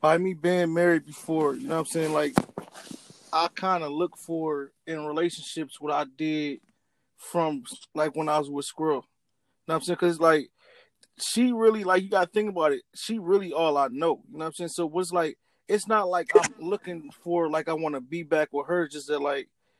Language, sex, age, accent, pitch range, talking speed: English, male, 20-39, American, 155-180 Hz, 225 wpm